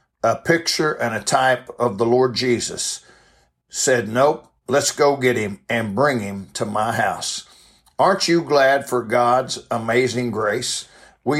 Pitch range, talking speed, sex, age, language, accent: 120-145 Hz, 155 wpm, male, 60-79, English, American